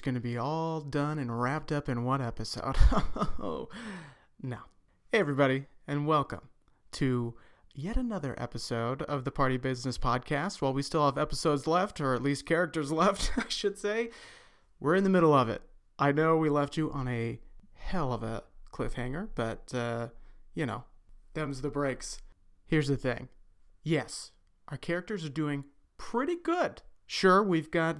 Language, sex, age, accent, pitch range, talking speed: English, male, 30-49, American, 130-165 Hz, 165 wpm